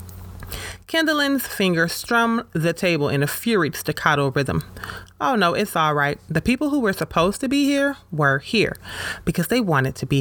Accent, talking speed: American, 175 wpm